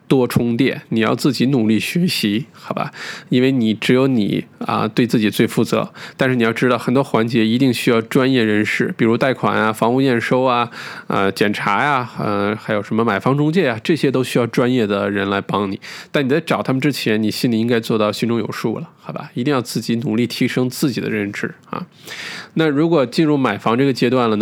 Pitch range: 110-135 Hz